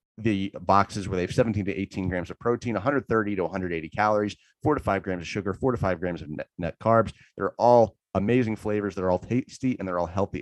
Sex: male